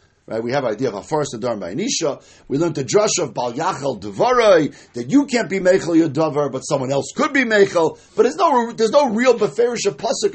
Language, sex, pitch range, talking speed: English, male, 145-215 Hz, 240 wpm